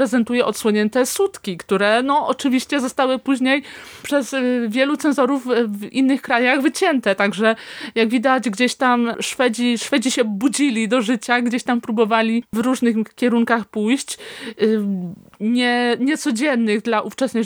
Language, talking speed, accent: Polish, 130 wpm, native